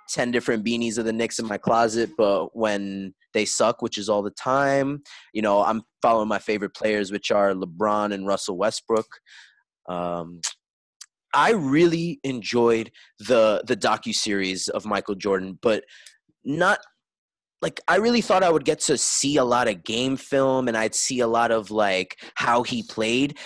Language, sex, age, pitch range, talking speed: English, male, 20-39, 105-135 Hz, 170 wpm